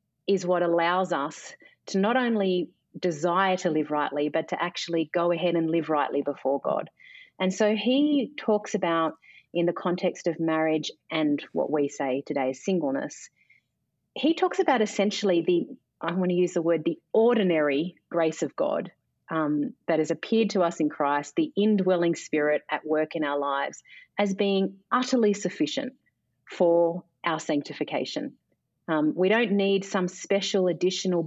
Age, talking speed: 30-49, 160 wpm